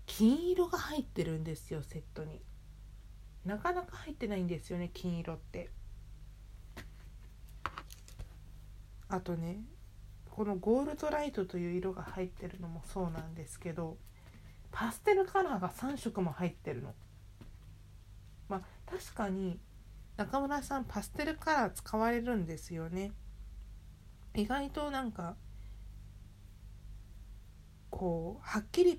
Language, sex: Japanese, female